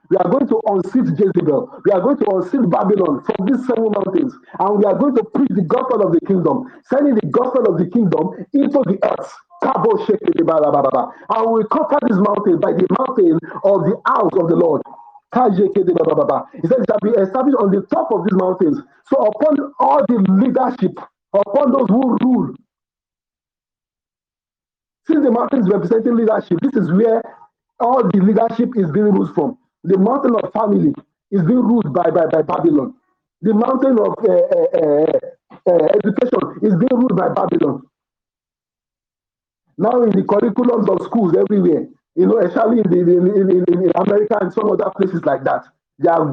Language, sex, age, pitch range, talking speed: English, male, 50-69, 195-260 Hz, 170 wpm